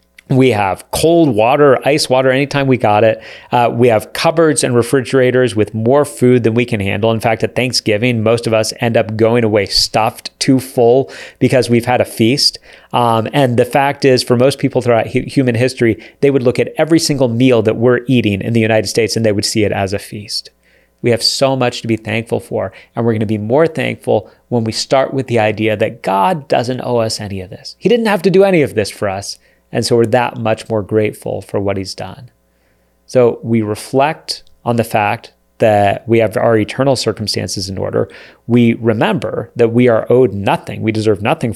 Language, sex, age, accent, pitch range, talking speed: English, male, 30-49, American, 110-130 Hz, 215 wpm